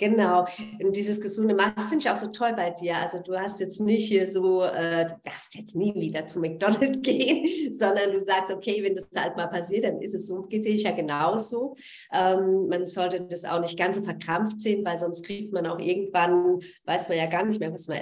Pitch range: 175-210 Hz